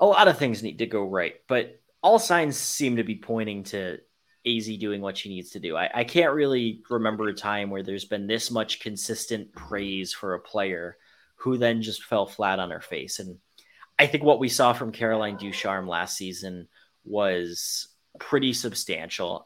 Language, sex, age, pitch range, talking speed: English, male, 20-39, 105-120 Hz, 190 wpm